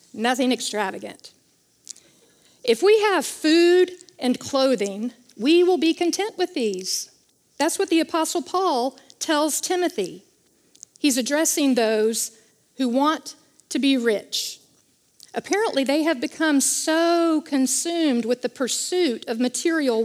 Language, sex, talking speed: English, female, 120 wpm